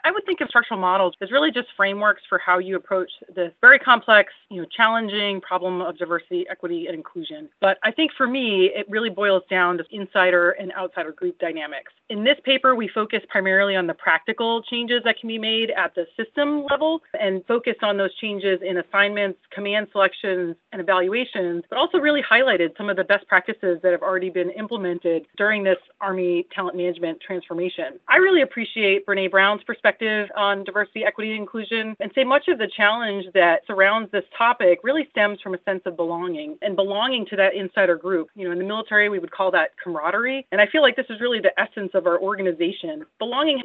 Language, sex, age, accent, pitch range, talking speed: English, female, 30-49, American, 185-225 Hz, 200 wpm